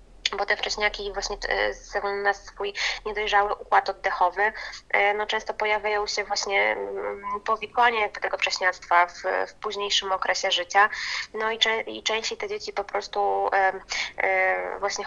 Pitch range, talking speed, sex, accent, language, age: 190-210 Hz, 125 wpm, female, native, Polish, 20-39